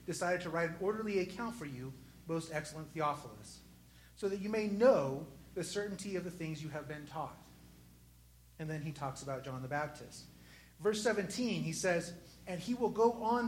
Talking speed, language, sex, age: 185 wpm, English, male, 30-49